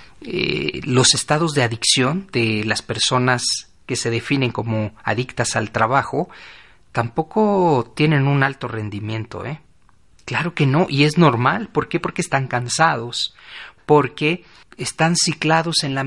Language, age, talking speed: Spanish, 40-59, 140 wpm